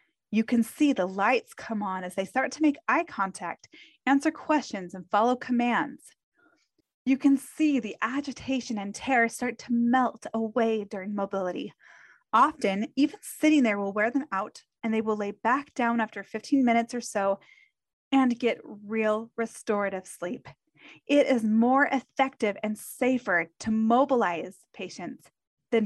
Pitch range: 215-275 Hz